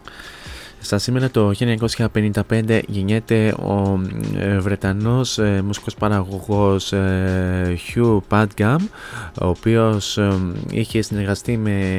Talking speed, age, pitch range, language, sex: 80 wpm, 20-39, 100-115 Hz, Greek, male